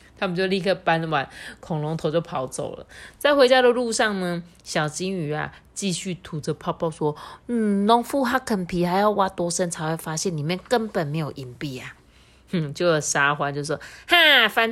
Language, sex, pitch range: Chinese, female, 155-215 Hz